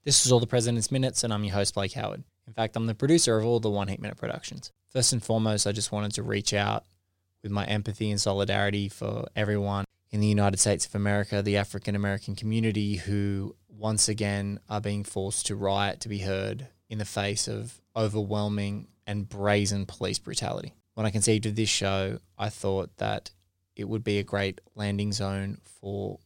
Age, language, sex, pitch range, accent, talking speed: 20-39, English, male, 100-110 Hz, Australian, 200 wpm